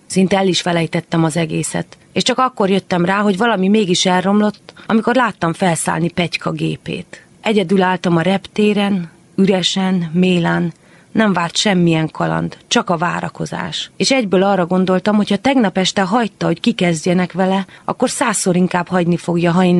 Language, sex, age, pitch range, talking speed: Hungarian, female, 30-49, 165-200 Hz, 160 wpm